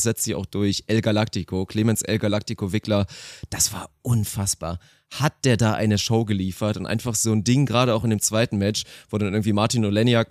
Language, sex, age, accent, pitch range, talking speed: German, male, 30-49, German, 105-125 Hz, 205 wpm